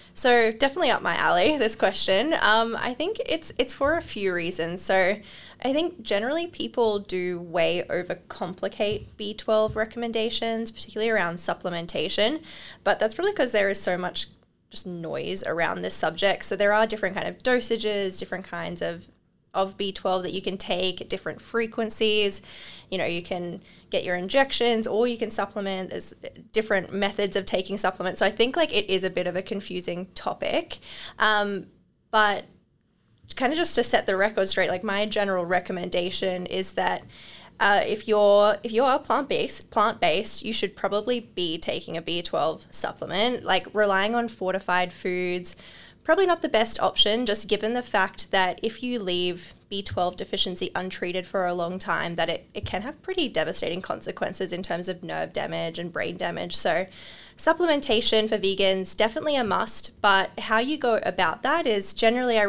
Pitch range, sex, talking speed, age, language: 185-225 Hz, female, 170 wpm, 10-29, English